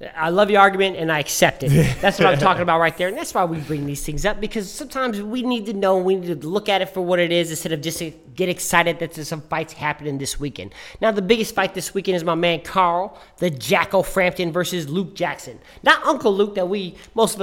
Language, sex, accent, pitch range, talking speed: English, male, American, 150-200 Hz, 260 wpm